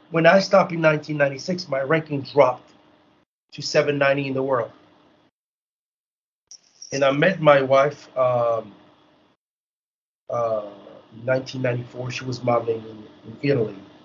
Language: English